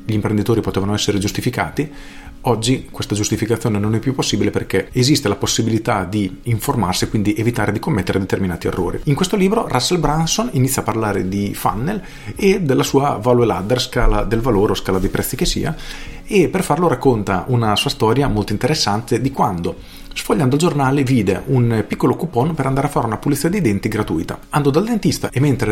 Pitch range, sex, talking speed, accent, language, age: 105-140 Hz, male, 190 wpm, native, Italian, 40-59